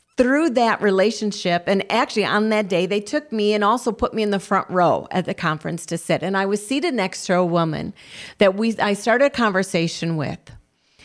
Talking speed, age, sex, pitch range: 210 wpm, 40-59, female, 190-245 Hz